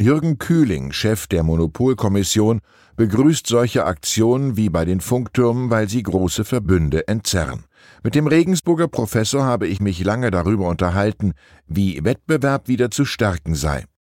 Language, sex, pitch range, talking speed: German, male, 90-120 Hz, 140 wpm